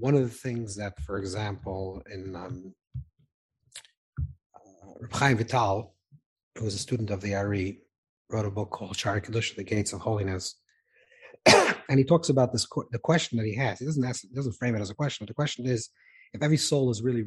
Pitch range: 100-125 Hz